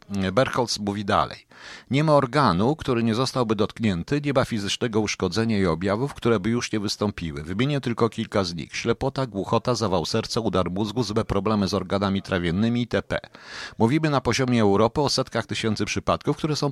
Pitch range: 100-125 Hz